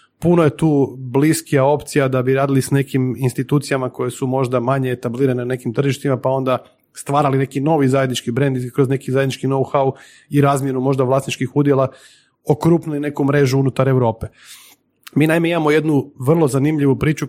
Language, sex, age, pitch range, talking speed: Croatian, male, 30-49, 130-150 Hz, 165 wpm